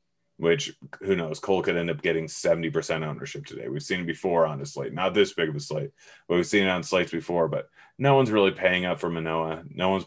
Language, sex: English, male